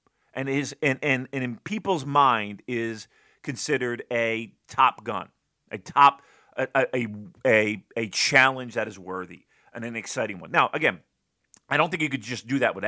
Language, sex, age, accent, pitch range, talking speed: English, male, 40-59, American, 125-175 Hz, 175 wpm